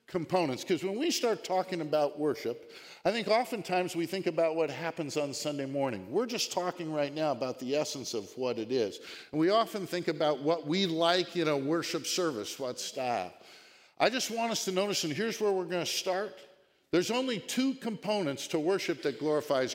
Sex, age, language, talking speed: male, 50-69, English, 200 wpm